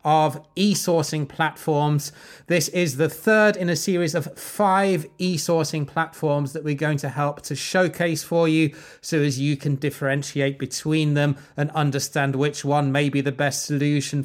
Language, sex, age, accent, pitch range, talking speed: English, male, 30-49, British, 140-175 Hz, 165 wpm